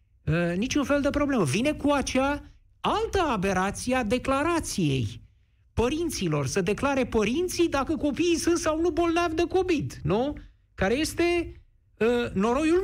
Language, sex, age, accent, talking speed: Romanian, male, 50-69, native, 125 wpm